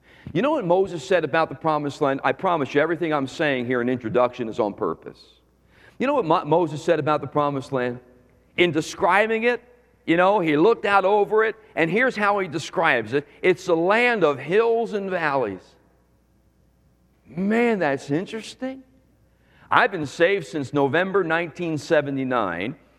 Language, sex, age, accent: English, male, 50-69, American